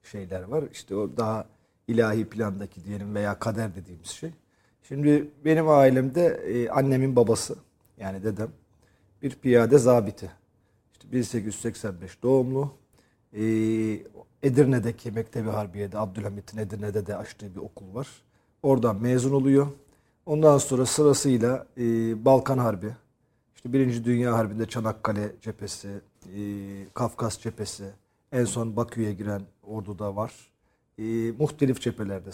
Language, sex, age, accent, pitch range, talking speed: Turkish, male, 40-59, native, 105-135 Hz, 120 wpm